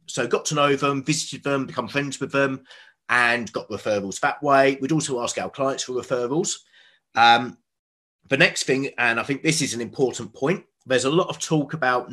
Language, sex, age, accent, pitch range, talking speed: English, male, 30-49, British, 120-155 Hz, 205 wpm